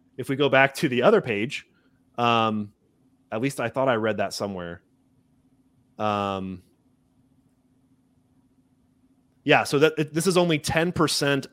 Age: 30-49